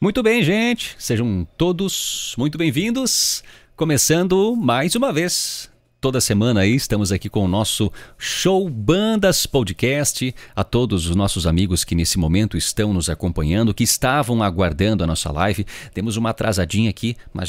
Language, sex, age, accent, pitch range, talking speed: Portuguese, male, 40-59, Brazilian, 95-135 Hz, 150 wpm